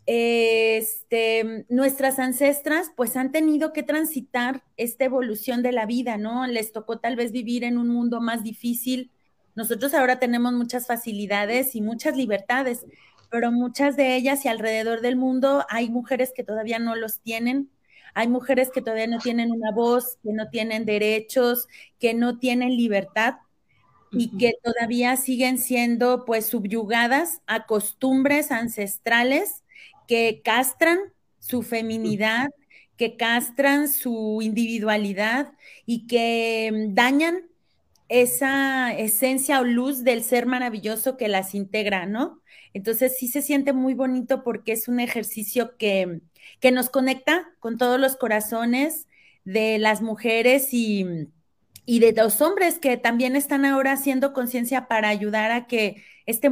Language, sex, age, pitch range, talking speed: Spanish, female, 30-49, 225-260 Hz, 140 wpm